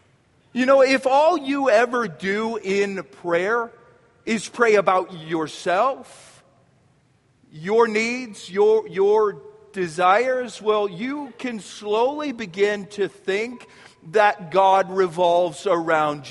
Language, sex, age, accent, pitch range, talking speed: English, male, 50-69, American, 150-225 Hz, 105 wpm